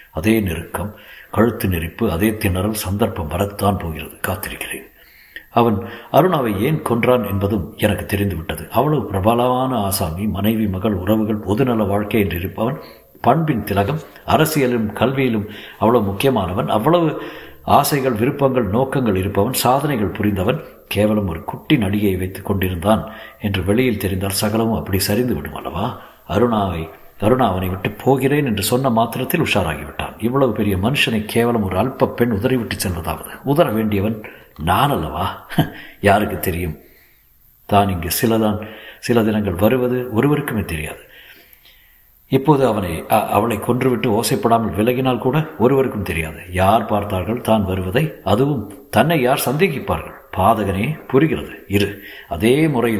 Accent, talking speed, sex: native, 120 wpm, male